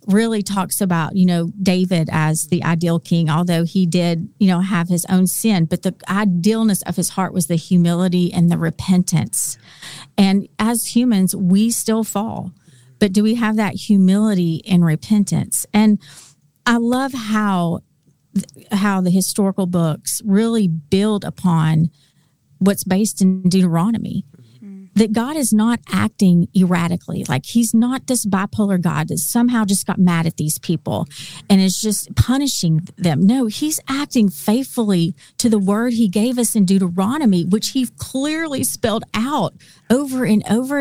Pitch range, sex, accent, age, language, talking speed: 170-215 Hz, female, American, 40-59, English, 155 wpm